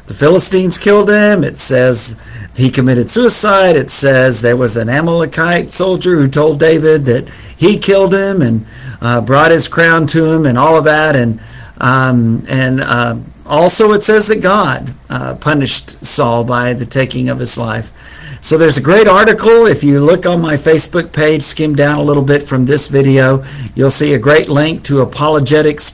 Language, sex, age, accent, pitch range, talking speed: English, male, 50-69, American, 130-160 Hz, 185 wpm